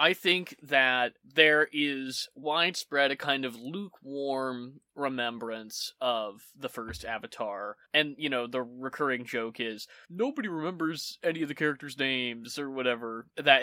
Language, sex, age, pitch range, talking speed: English, male, 20-39, 120-145 Hz, 140 wpm